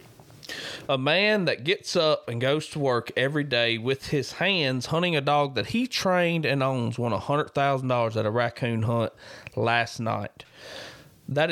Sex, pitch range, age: male, 120-155 Hz, 30-49